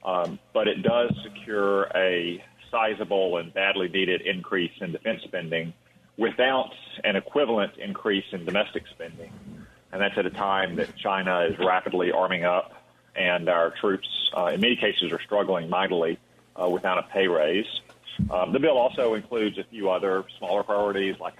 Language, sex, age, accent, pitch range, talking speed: English, male, 40-59, American, 95-105 Hz, 165 wpm